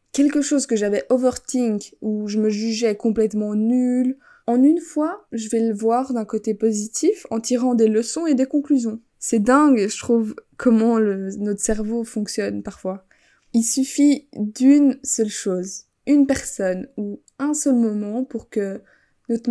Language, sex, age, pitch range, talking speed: French, female, 20-39, 210-255 Hz, 160 wpm